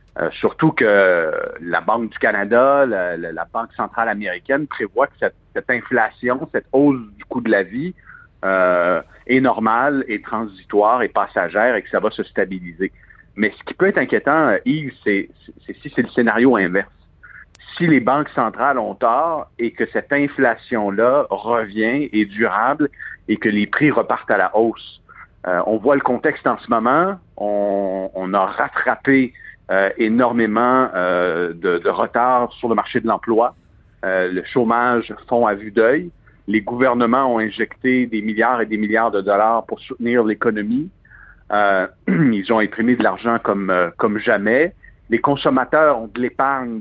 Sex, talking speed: male, 170 wpm